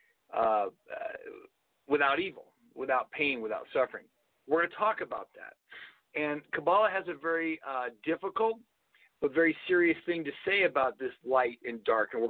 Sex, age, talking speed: male, 50-69, 160 wpm